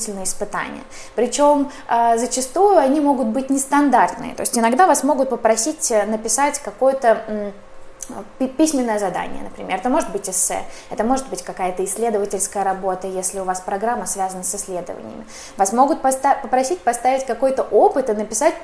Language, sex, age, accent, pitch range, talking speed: Russian, female, 20-39, native, 210-255 Hz, 140 wpm